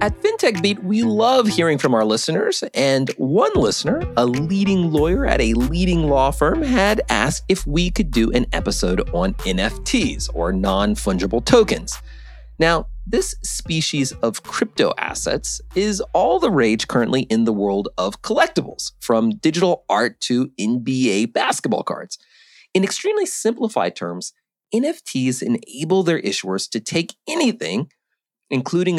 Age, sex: 30-49, male